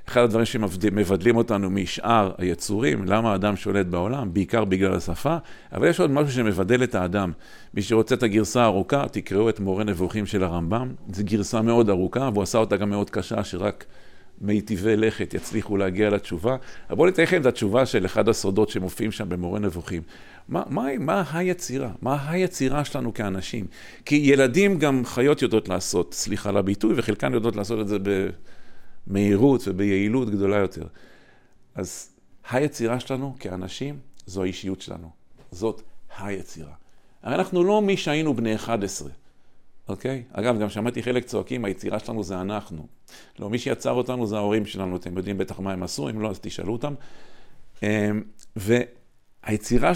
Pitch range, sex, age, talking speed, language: 95-120 Hz, male, 50-69, 150 wpm, Hebrew